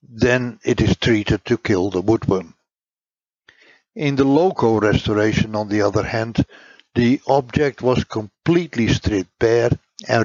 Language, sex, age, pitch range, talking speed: English, male, 60-79, 110-135 Hz, 135 wpm